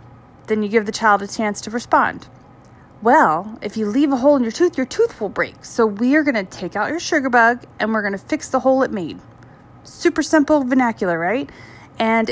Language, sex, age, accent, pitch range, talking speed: English, female, 30-49, American, 200-265 Hz, 215 wpm